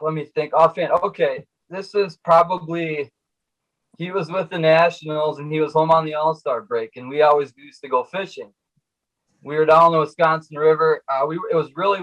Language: English